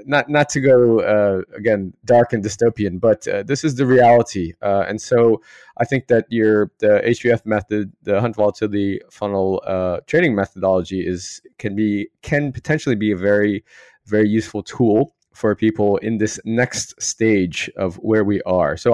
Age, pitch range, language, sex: 20-39, 100-120 Hz, English, male